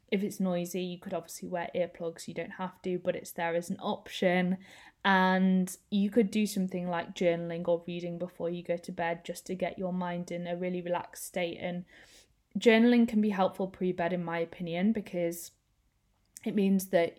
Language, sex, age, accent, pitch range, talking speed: English, female, 20-39, British, 175-190 Hz, 190 wpm